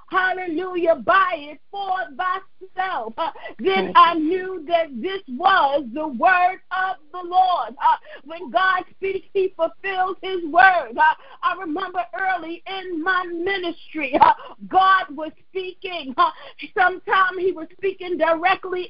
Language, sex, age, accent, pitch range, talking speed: English, female, 40-59, American, 335-380 Hz, 135 wpm